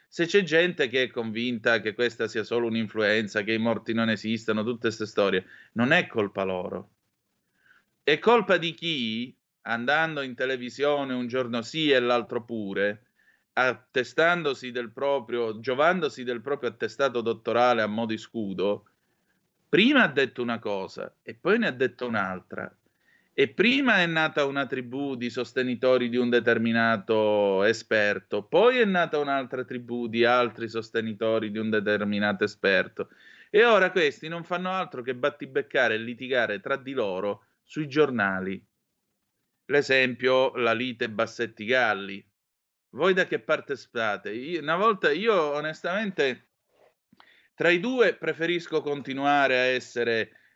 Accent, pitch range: native, 115-145 Hz